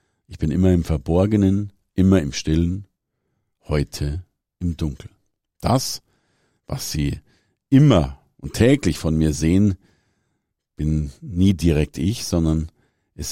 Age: 50-69